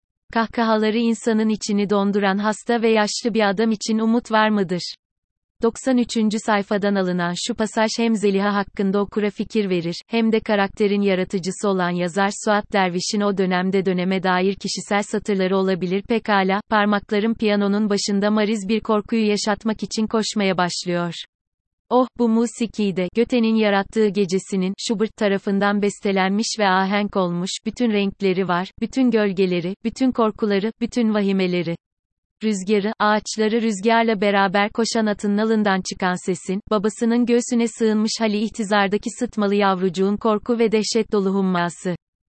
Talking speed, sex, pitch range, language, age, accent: 130 wpm, female, 195-220 Hz, Turkish, 30-49, native